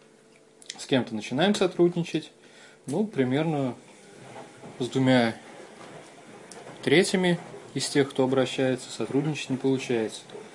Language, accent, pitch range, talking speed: Russian, native, 120-150 Hz, 90 wpm